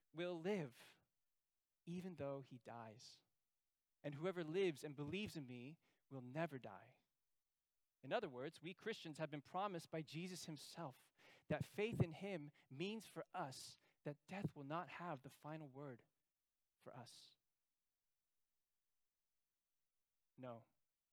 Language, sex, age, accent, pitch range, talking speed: English, male, 20-39, American, 140-180 Hz, 130 wpm